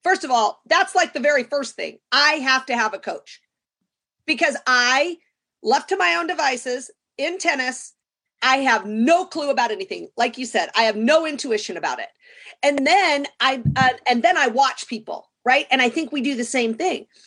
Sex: female